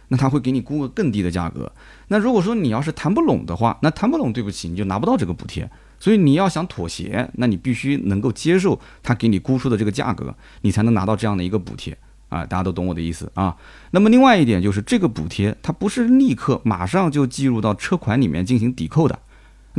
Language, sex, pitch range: Chinese, male, 95-145 Hz